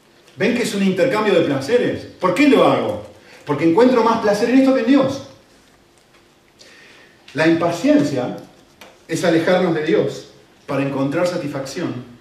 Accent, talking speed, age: Argentinian, 145 wpm, 40-59